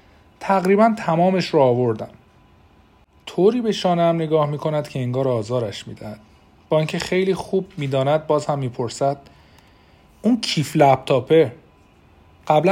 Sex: male